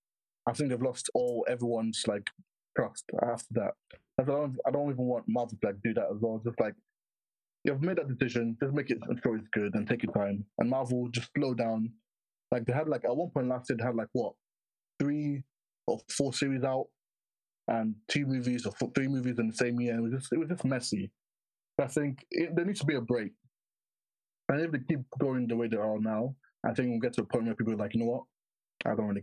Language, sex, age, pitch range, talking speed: English, male, 20-39, 110-135 Hz, 245 wpm